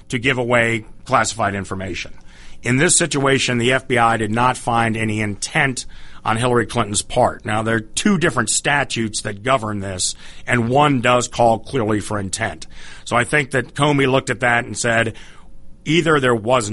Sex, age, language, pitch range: male, 40-59, English, 110-130 Hz